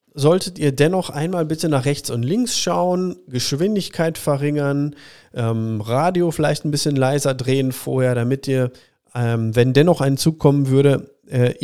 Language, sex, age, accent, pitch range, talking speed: German, male, 40-59, German, 120-155 Hz, 155 wpm